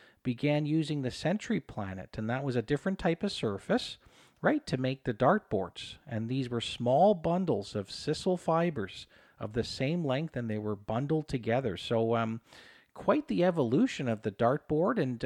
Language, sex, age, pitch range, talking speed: English, male, 40-59, 115-160 Hz, 175 wpm